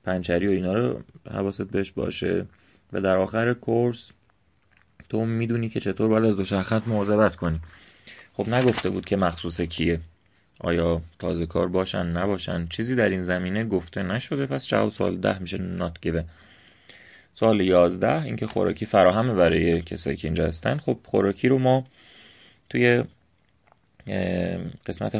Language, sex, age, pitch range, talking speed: Persian, male, 30-49, 85-110 Hz, 145 wpm